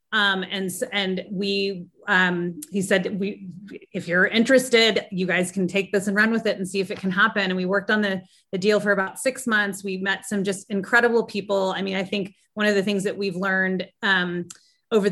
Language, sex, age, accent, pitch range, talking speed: English, female, 30-49, American, 185-210 Hz, 220 wpm